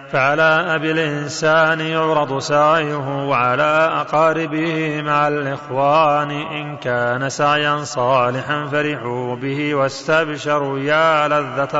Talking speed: 90 wpm